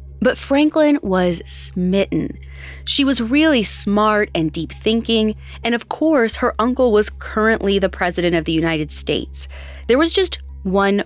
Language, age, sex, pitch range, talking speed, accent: English, 20-39, female, 165-255 Hz, 150 wpm, American